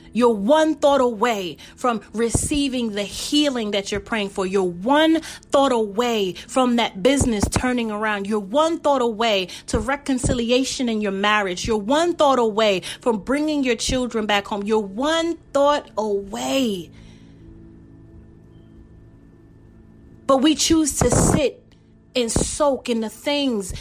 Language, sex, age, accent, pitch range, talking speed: English, female, 30-49, American, 230-300 Hz, 135 wpm